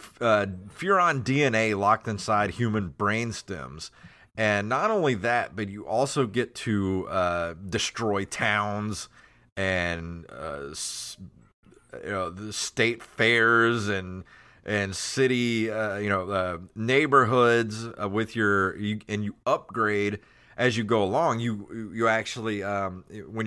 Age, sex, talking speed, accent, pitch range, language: 30-49, male, 120 wpm, American, 95-110 Hz, English